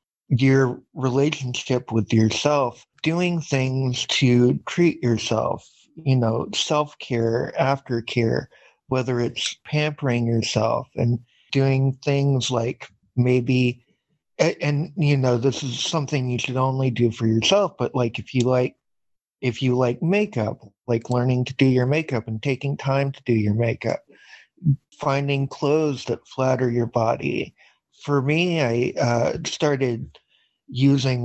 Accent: American